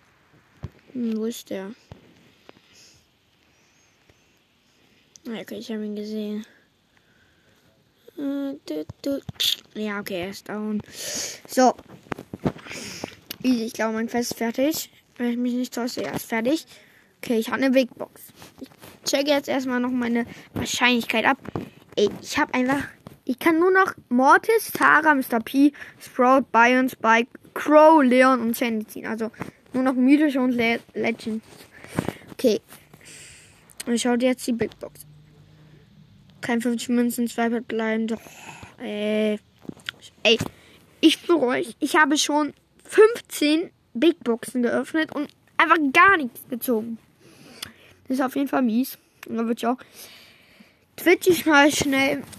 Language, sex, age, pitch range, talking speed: German, female, 10-29, 225-280 Hz, 130 wpm